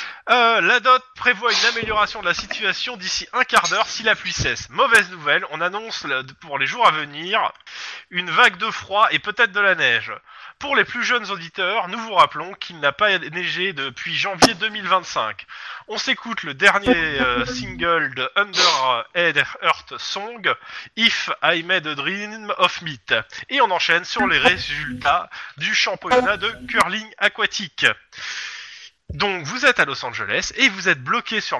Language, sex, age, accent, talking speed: French, male, 20-39, French, 170 wpm